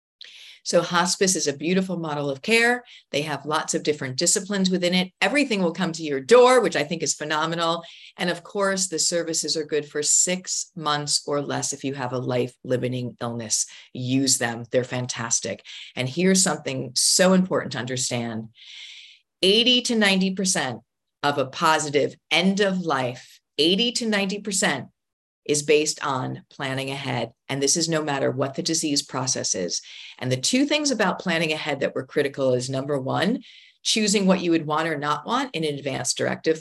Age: 40-59